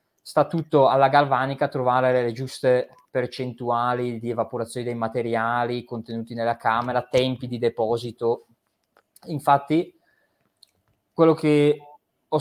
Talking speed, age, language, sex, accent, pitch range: 105 wpm, 20-39, Italian, male, native, 120-145 Hz